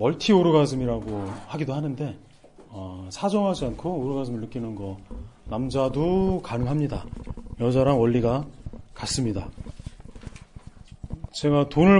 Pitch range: 110-170 Hz